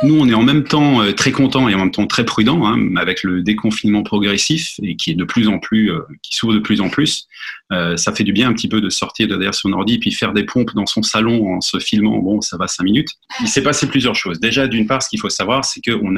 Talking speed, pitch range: 285 wpm, 100-120 Hz